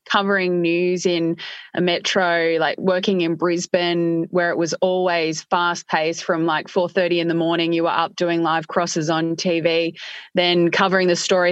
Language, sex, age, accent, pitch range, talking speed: English, female, 20-39, Australian, 170-195 Hz, 175 wpm